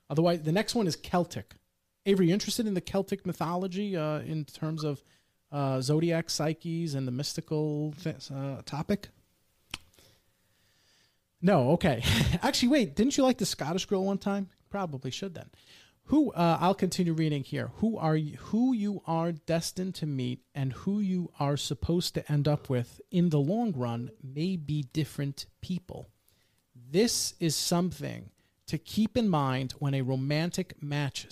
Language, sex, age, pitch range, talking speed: English, male, 30-49, 130-175 Hz, 160 wpm